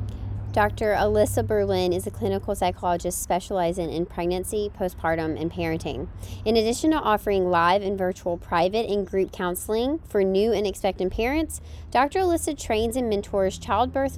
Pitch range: 185-240 Hz